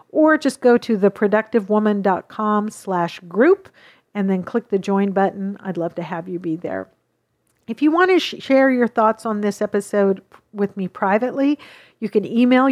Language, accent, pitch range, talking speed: English, American, 200-235 Hz, 170 wpm